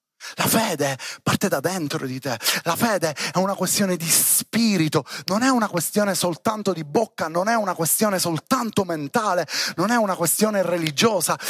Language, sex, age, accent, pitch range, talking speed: Italian, male, 30-49, native, 145-215 Hz, 165 wpm